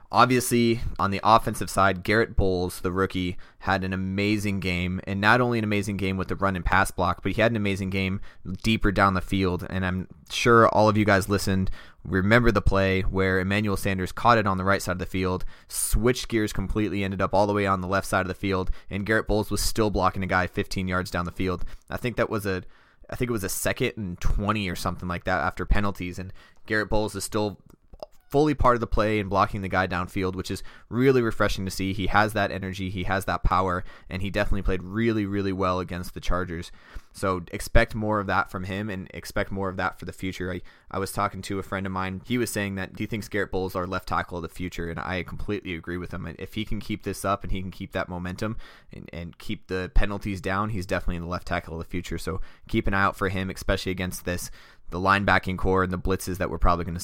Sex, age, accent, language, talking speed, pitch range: male, 20-39, American, English, 250 wpm, 90-105 Hz